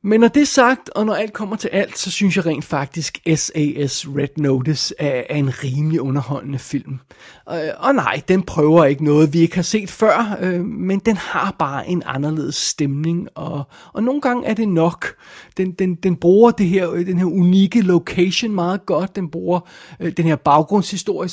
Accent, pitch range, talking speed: native, 155-185 Hz, 190 wpm